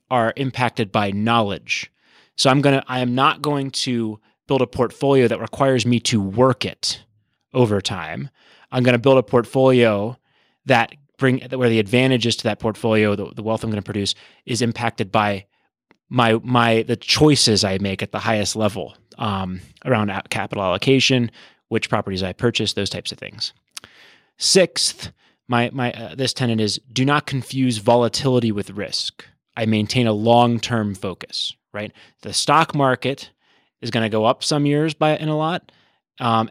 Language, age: English, 30-49